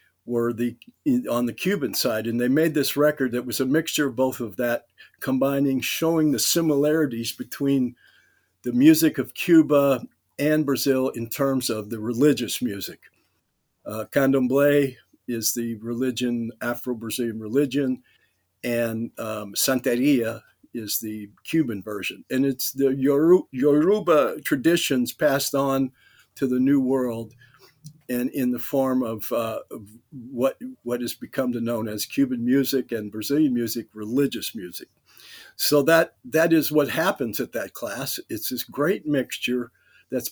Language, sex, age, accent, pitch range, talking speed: English, male, 50-69, American, 120-145 Hz, 140 wpm